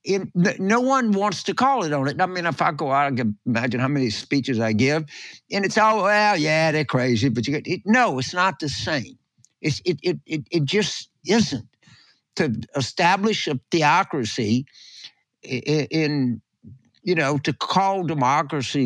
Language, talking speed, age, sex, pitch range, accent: English, 180 wpm, 60-79, male, 120-170 Hz, American